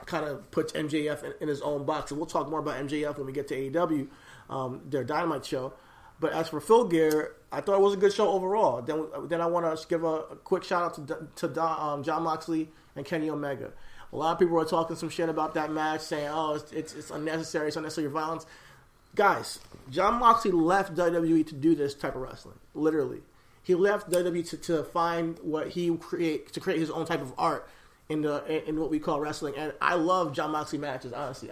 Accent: American